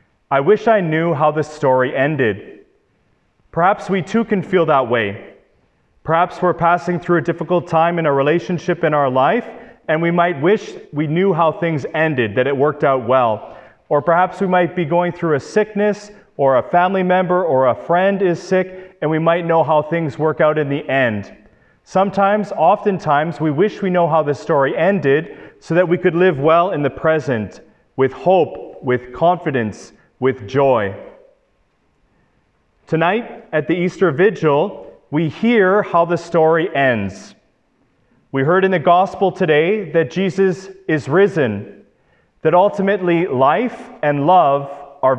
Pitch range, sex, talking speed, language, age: 150-185 Hz, male, 165 wpm, English, 30-49